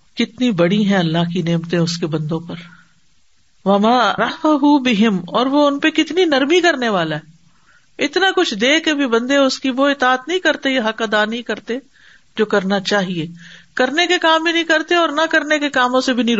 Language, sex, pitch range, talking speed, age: Urdu, female, 185-260 Hz, 200 wpm, 50-69